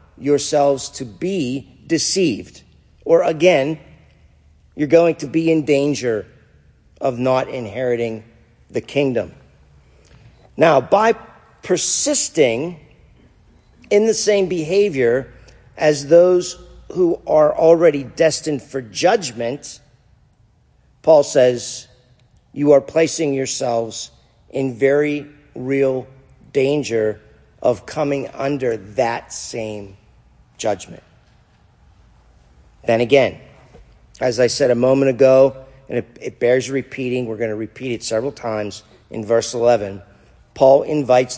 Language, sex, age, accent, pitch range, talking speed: English, male, 50-69, American, 115-150 Hz, 105 wpm